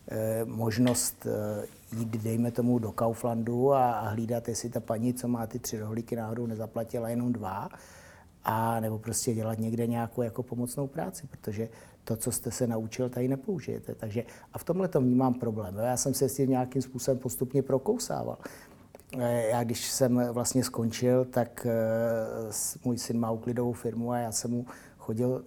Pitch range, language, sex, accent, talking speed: 115-125 Hz, Czech, male, native, 155 wpm